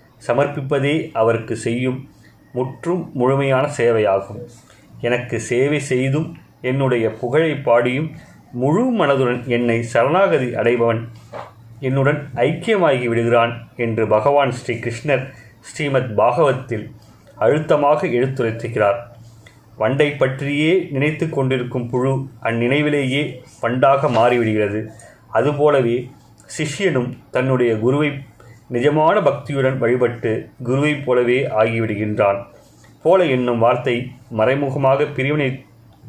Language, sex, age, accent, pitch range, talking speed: Tamil, male, 30-49, native, 115-135 Hz, 85 wpm